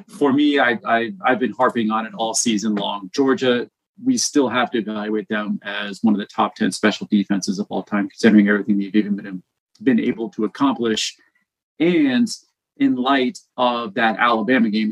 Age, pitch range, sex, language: 30-49, 105-135 Hz, male, English